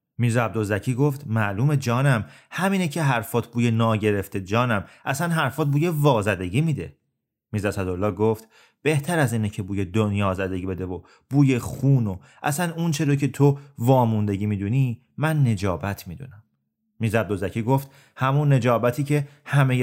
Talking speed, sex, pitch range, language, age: 140 wpm, male, 110-140 Hz, Persian, 30-49